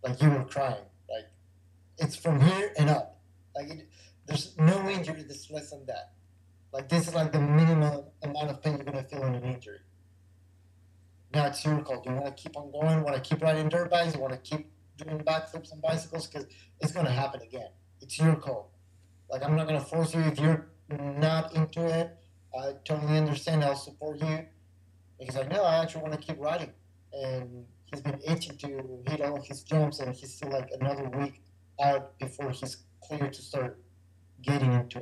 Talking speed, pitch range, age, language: 205 wpm, 95-150 Hz, 30-49, English